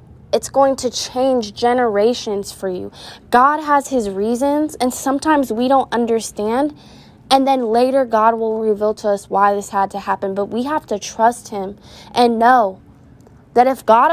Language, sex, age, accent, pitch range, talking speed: English, female, 10-29, American, 215-260 Hz, 170 wpm